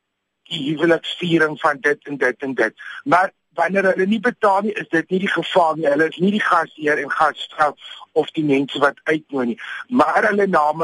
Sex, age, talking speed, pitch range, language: male, 50-69, 195 wpm, 140-195 Hz, Dutch